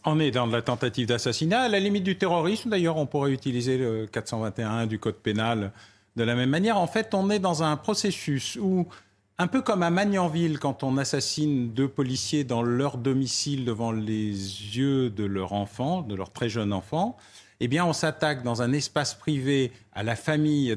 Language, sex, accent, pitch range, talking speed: French, male, French, 110-145 Hz, 190 wpm